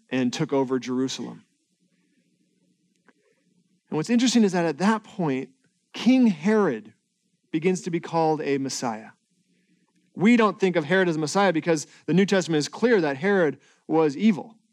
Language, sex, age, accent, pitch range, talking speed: English, male, 40-59, American, 170-215 Hz, 155 wpm